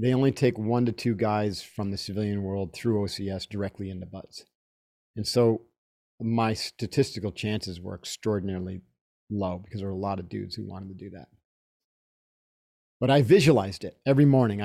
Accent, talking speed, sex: American, 170 wpm, male